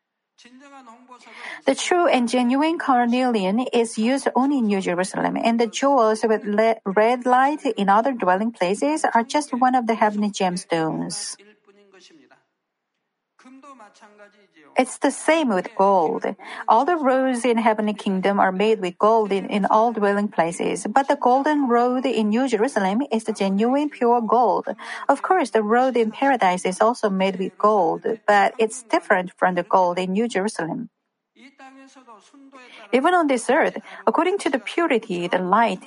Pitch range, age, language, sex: 200-255 Hz, 40-59, Korean, female